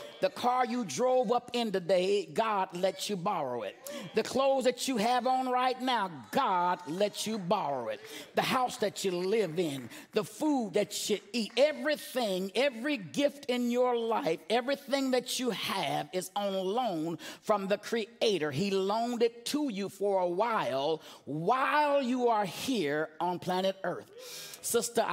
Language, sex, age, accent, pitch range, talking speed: English, male, 50-69, American, 185-235 Hz, 160 wpm